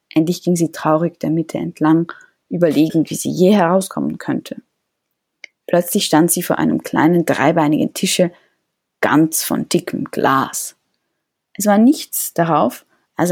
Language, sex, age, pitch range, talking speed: German, female, 20-39, 170-250 Hz, 135 wpm